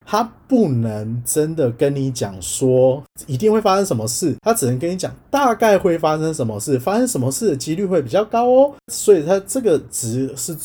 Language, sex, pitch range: Chinese, male, 115-150 Hz